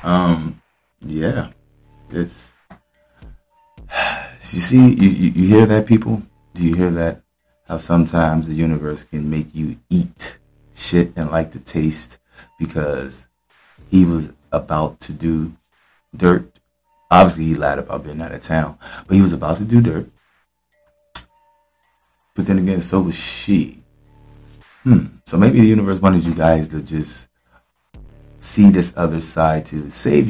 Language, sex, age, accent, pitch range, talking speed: English, male, 30-49, American, 80-100 Hz, 140 wpm